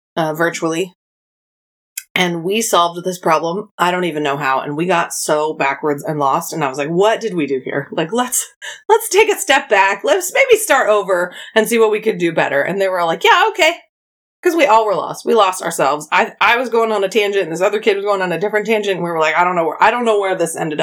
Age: 30-49